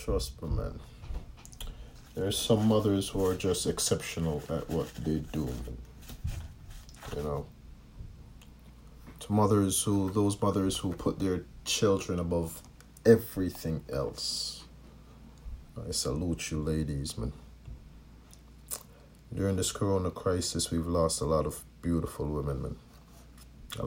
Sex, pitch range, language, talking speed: male, 75-100 Hz, English, 120 wpm